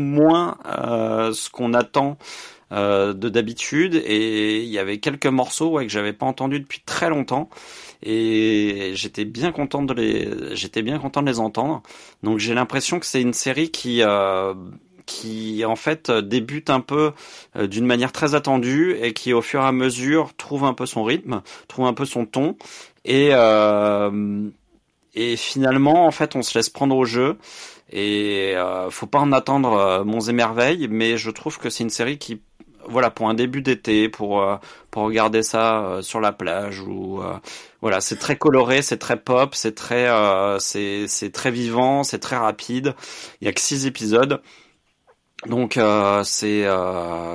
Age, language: 30-49, French